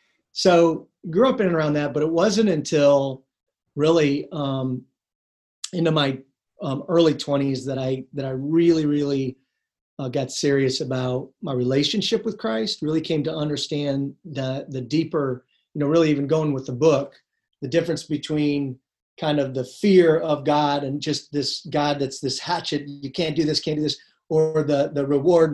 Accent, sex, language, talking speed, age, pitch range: American, male, English, 175 wpm, 40-59, 135-160 Hz